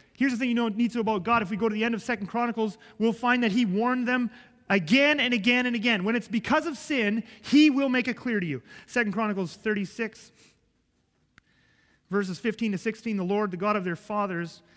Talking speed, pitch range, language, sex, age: 230 wpm, 175-225 Hz, English, male, 30-49